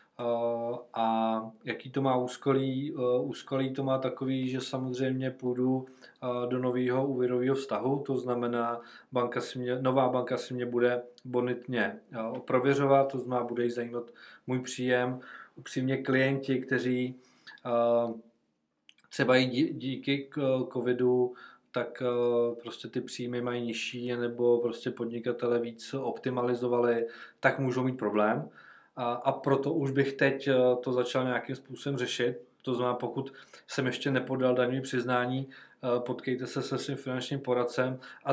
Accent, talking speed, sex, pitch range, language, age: native, 125 wpm, male, 120-130 Hz, Czech, 20-39